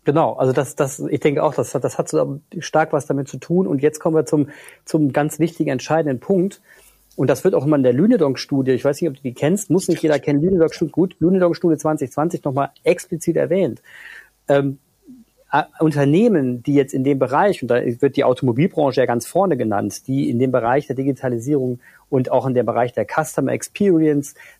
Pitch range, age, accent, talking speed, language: 135-165 Hz, 40-59, German, 200 wpm, German